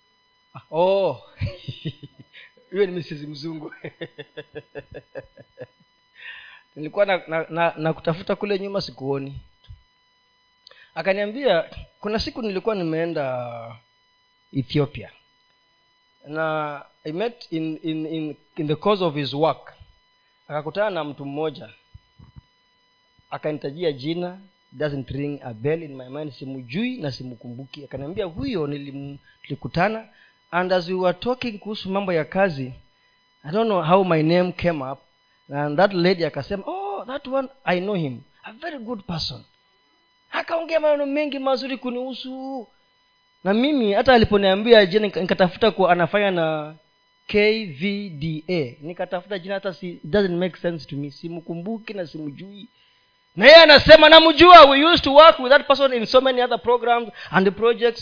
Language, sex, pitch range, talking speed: Swahili, male, 155-235 Hz, 130 wpm